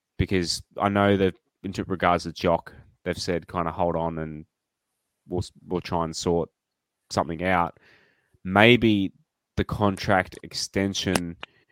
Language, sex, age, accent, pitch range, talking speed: English, male, 20-39, Australian, 85-100 Hz, 135 wpm